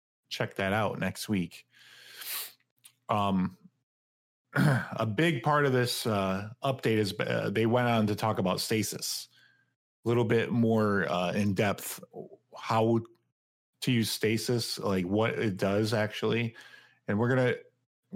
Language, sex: English, male